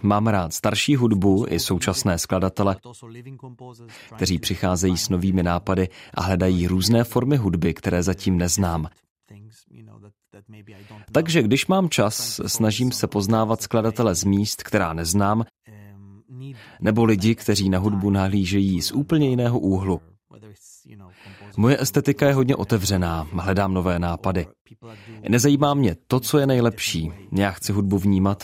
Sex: male